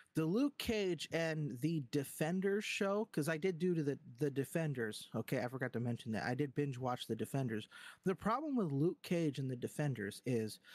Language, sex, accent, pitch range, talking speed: English, male, American, 135-180 Hz, 195 wpm